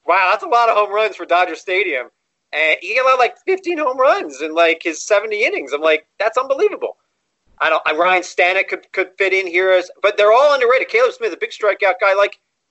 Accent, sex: American, male